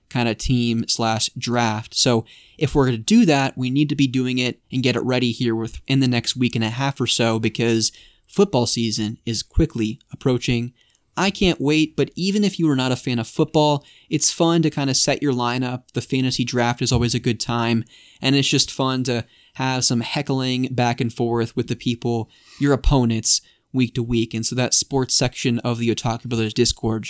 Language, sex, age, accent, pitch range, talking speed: English, male, 20-39, American, 115-135 Hz, 215 wpm